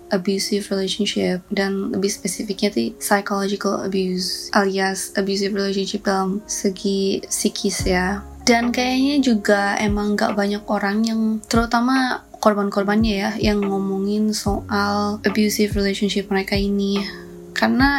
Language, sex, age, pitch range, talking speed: Indonesian, female, 20-39, 200-220 Hz, 110 wpm